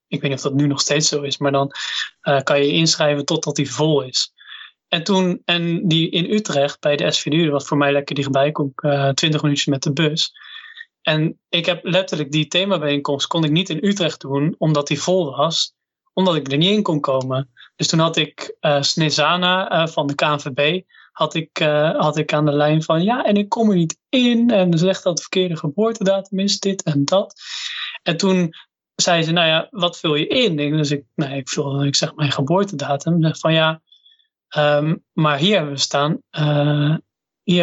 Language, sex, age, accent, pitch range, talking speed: Dutch, male, 20-39, Dutch, 145-185 Hz, 215 wpm